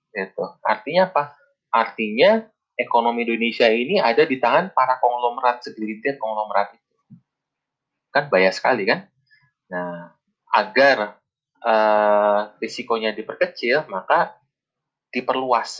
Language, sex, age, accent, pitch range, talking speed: Indonesian, male, 20-39, native, 105-145 Hz, 100 wpm